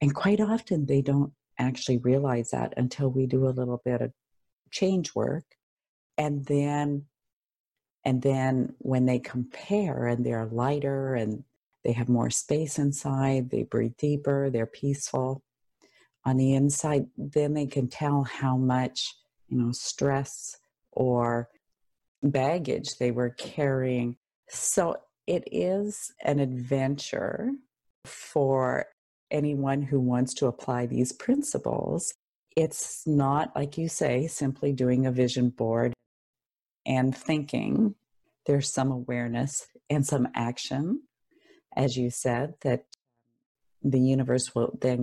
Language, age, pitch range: English, 50-69, 125-145 Hz